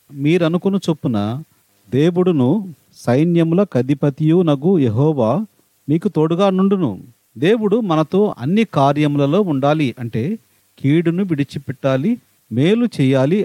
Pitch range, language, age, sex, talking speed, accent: 135-180 Hz, Telugu, 40-59, male, 90 wpm, native